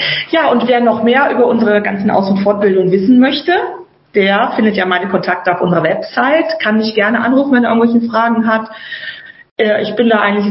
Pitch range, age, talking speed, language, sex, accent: 190-230 Hz, 40-59, 200 wpm, German, female, German